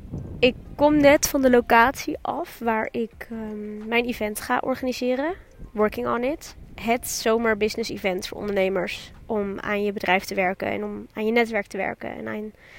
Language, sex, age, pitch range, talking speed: Dutch, female, 20-39, 205-235 Hz, 180 wpm